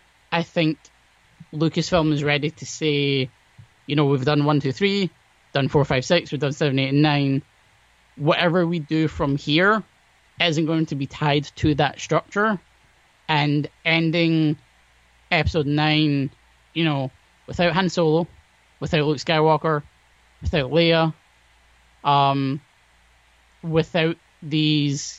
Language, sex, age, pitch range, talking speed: English, male, 20-39, 130-160 Hz, 130 wpm